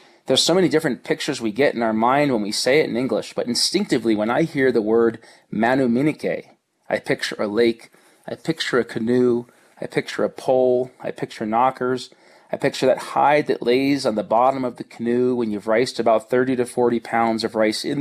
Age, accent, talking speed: 30-49, American, 205 wpm